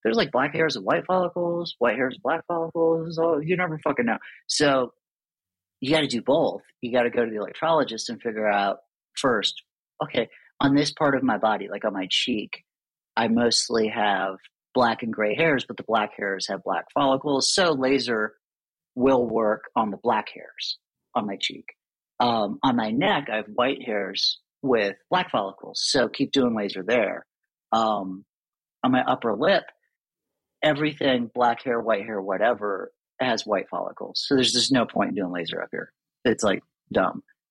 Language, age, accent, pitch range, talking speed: English, 40-59, American, 115-165 Hz, 180 wpm